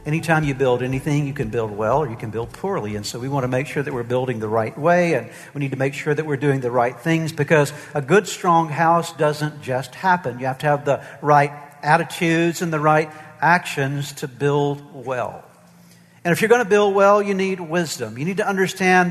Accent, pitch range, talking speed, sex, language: American, 150-180 Hz, 230 wpm, male, English